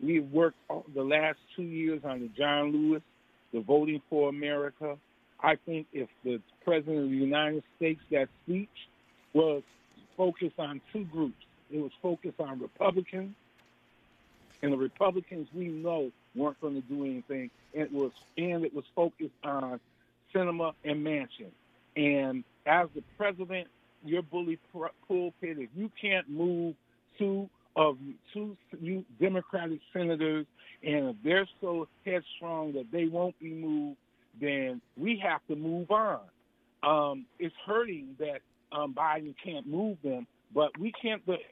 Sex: male